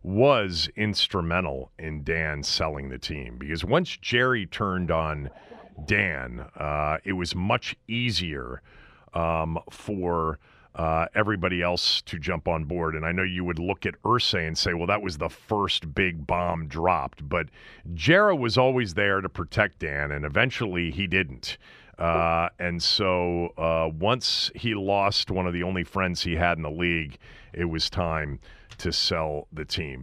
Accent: American